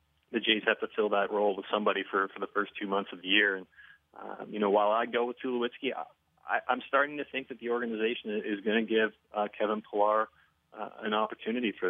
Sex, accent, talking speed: male, American, 225 wpm